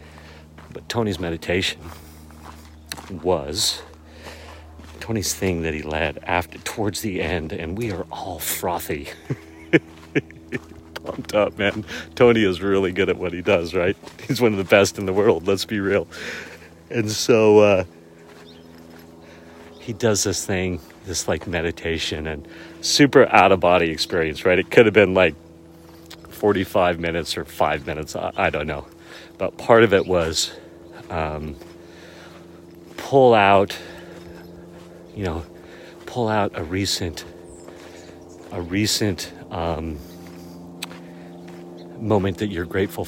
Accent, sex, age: American, male, 40-59